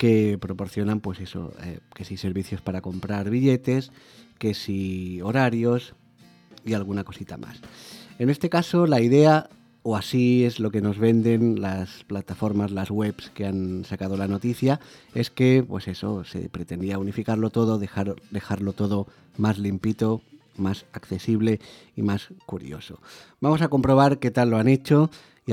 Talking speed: 145 wpm